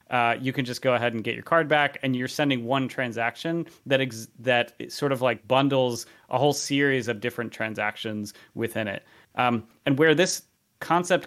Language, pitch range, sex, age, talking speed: English, 120-140 Hz, male, 30-49, 190 wpm